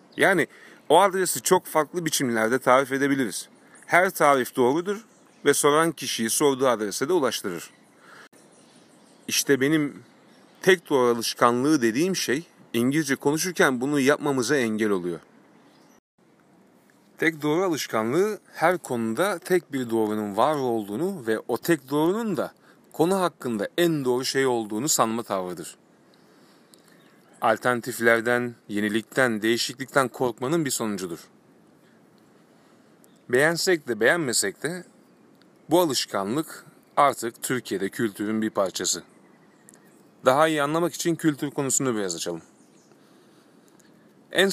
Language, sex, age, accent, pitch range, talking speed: Turkish, male, 40-59, native, 115-160 Hz, 110 wpm